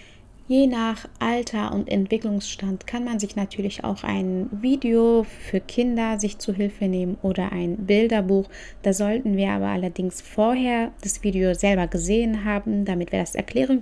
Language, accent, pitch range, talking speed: German, German, 185-215 Hz, 155 wpm